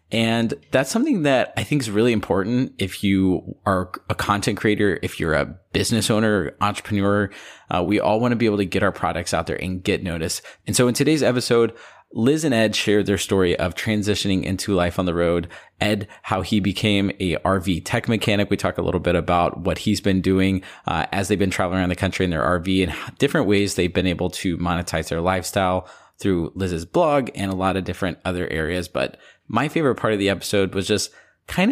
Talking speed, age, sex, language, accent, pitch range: 215 wpm, 20-39, male, English, American, 90-105 Hz